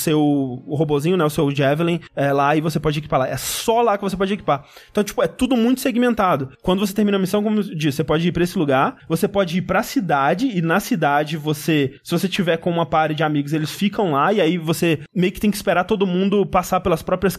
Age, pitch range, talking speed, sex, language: 20-39, 160-220 Hz, 250 wpm, male, Portuguese